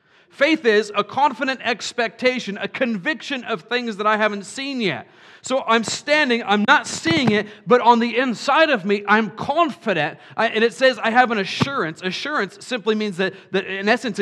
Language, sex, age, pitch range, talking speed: English, male, 40-59, 185-255 Hz, 185 wpm